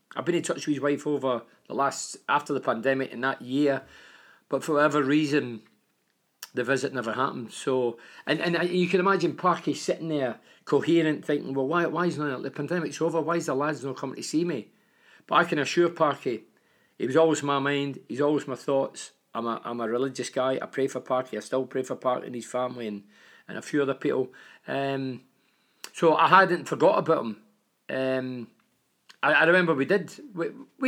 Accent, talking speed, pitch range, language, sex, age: British, 205 wpm, 130-165 Hz, English, male, 40-59